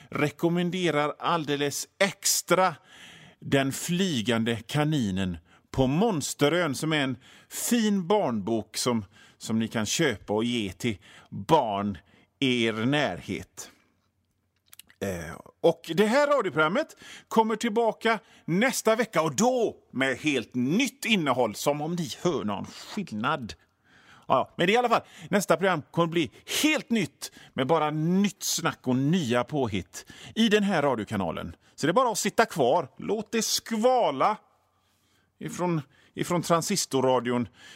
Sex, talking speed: male, 130 wpm